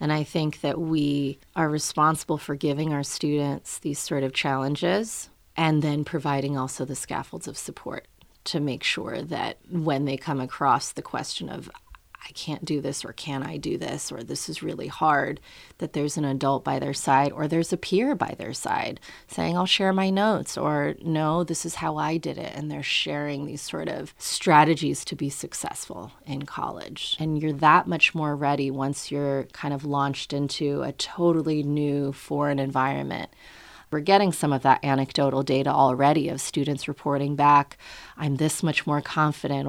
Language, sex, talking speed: English, female, 185 wpm